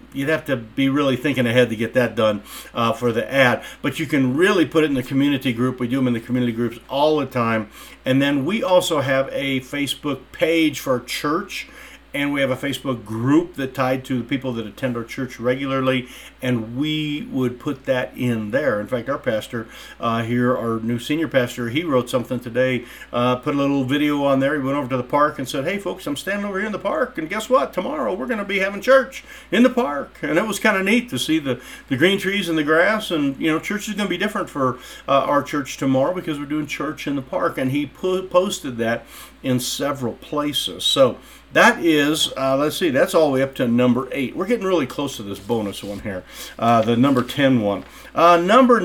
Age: 50-69